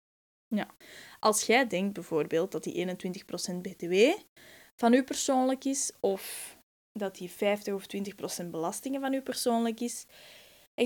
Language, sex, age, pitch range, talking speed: Dutch, female, 10-29, 195-240 Hz, 140 wpm